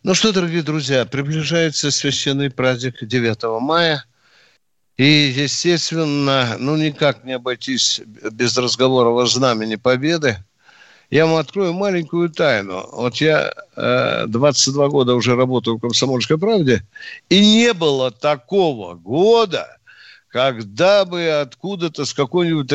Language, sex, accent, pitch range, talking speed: Russian, male, native, 125-185 Hz, 120 wpm